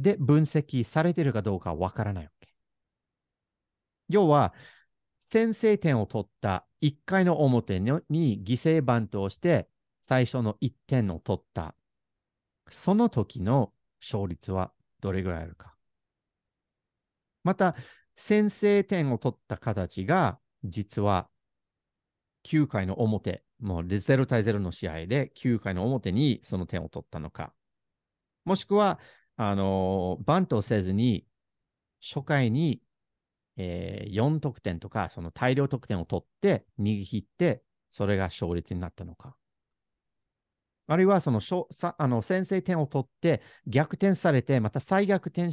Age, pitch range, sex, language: 40-59, 100-155 Hz, male, Japanese